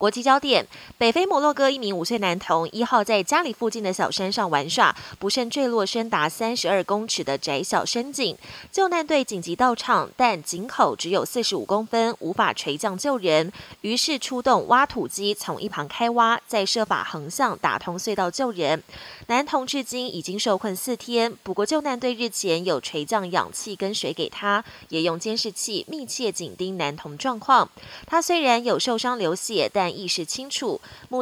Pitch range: 185-250 Hz